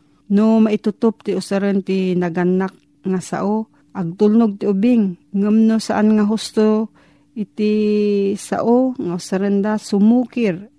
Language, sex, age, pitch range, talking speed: Filipino, female, 40-59, 175-210 Hz, 120 wpm